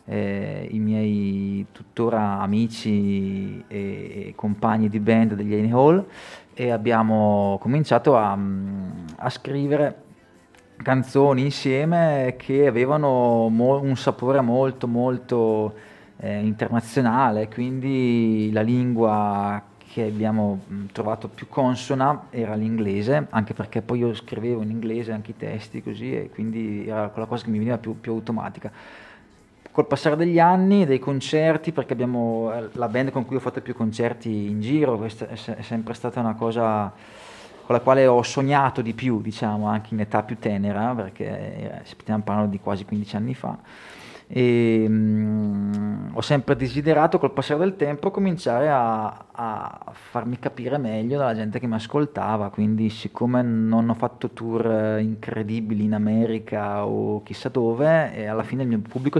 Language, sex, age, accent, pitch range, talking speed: Italian, male, 30-49, native, 110-125 Hz, 150 wpm